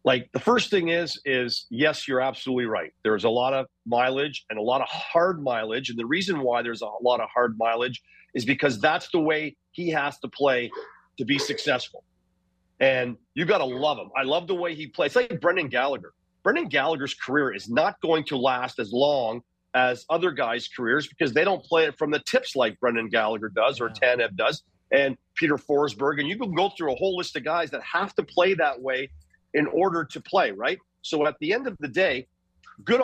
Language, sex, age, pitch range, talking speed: English, male, 40-59, 120-155 Hz, 220 wpm